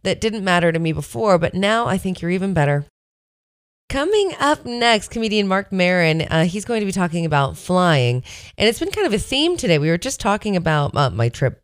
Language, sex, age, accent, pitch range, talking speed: English, female, 30-49, American, 140-185 Hz, 215 wpm